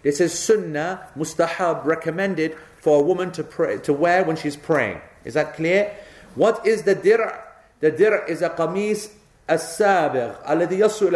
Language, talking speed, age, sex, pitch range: English, 155 wpm, 40-59, male, 140-180 Hz